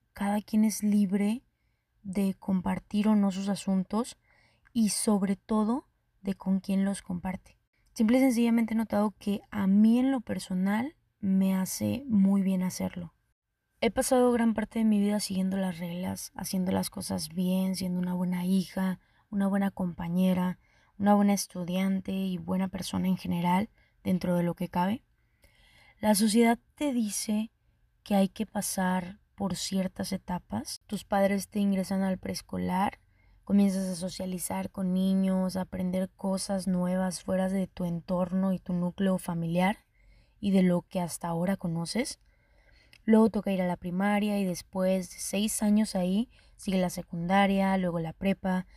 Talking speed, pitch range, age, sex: 155 wpm, 180-205 Hz, 20-39, female